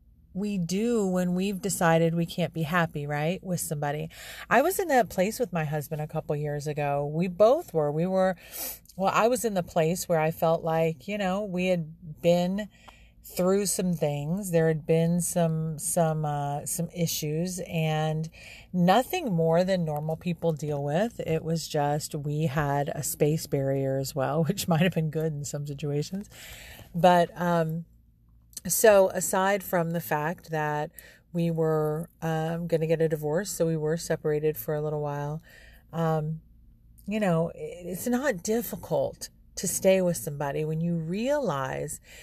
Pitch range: 155-195 Hz